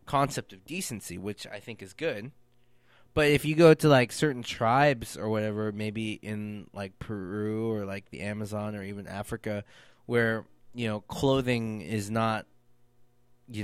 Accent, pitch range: American, 100-120 Hz